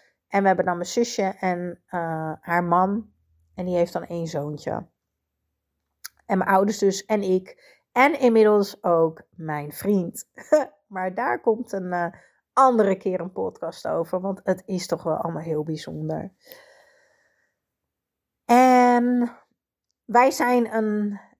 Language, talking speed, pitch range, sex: Dutch, 135 wpm, 180-235 Hz, female